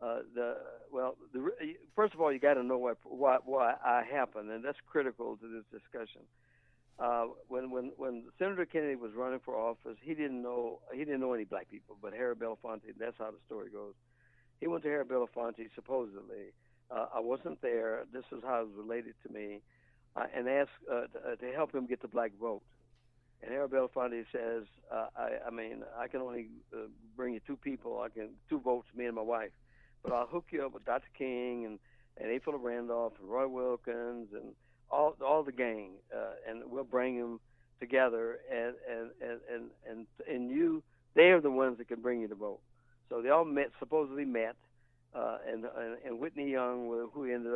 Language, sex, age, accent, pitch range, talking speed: English, male, 60-79, American, 115-135 Hz, 200 wpm